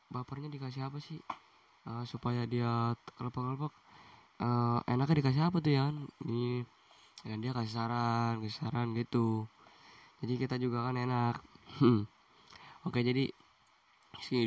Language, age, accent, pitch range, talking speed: Indonesian, 10-29, native, 115-130 Hz, 135 wpm